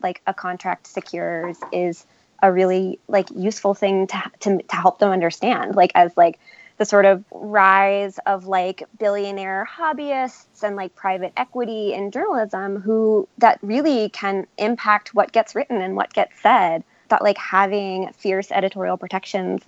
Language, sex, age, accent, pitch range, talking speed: English, female, 20-39, American, 180-205 Hz, 155 wpm